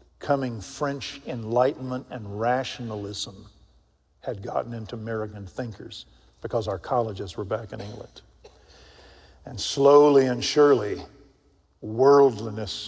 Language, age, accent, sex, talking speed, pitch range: English, 50-69, American, male, 100 wpm, 105-130 Hz